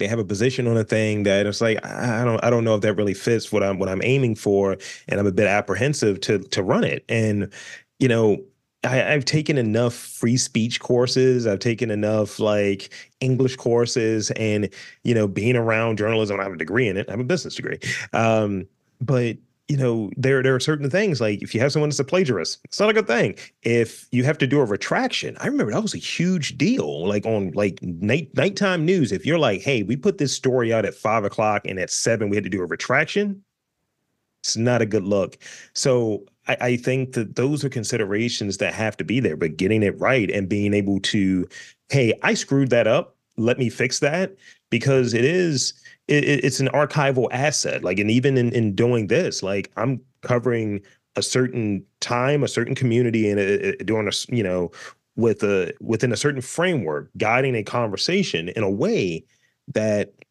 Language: English